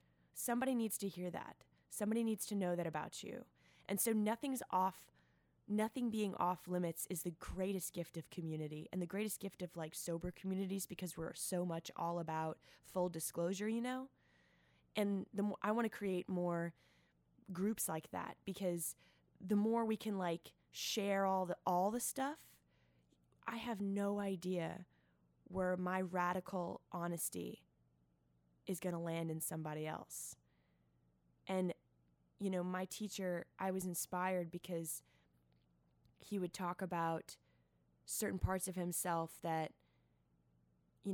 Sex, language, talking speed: female, English, 145 wpm